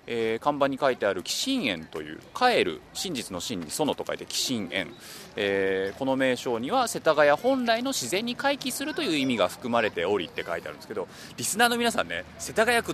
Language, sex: Japanese, male